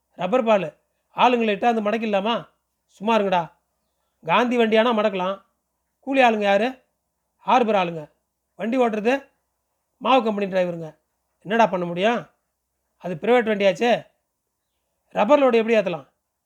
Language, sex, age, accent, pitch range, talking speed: Tamil, male, 40-59, native, 195-240 Hz, 110 wpm